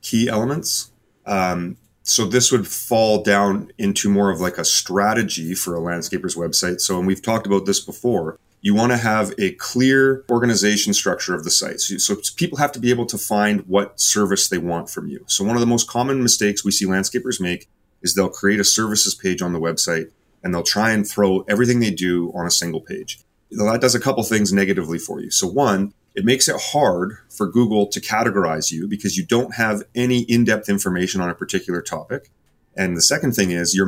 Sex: male